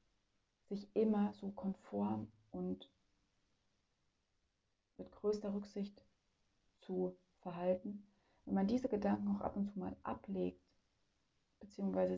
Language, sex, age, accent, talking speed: German, female, 30-49, German, 105 wpm